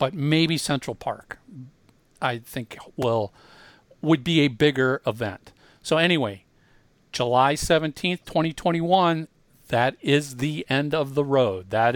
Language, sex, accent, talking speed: English, male, American, 120 wpm